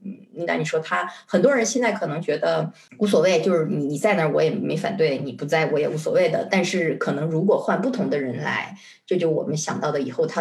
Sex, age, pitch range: female, 20-39, 155-210 Hz